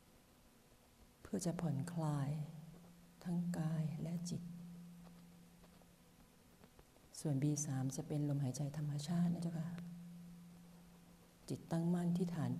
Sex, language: female, Thai